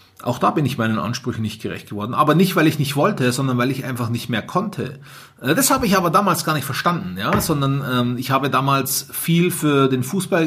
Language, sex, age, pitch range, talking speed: German, male, 30-49, 120-170 Hz, 230 wpm